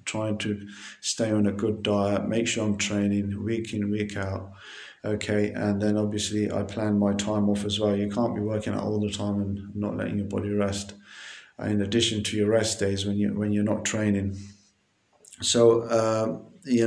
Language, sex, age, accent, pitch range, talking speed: English, male, 30-49, British, 100-115 Hz, 190 wpm